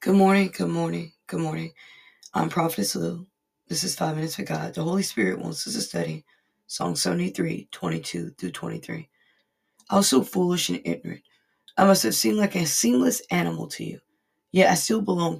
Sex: female